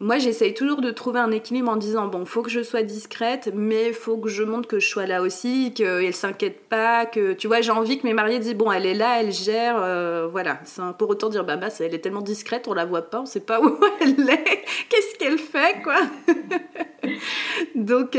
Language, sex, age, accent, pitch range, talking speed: French, female, 30-49, French, 185-255 Hz, 245 wpm